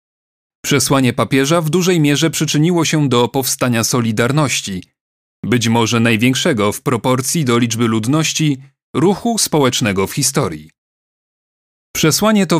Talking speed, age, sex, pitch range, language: 115 wpm, 30-49, male, 115-155 Hz, Polish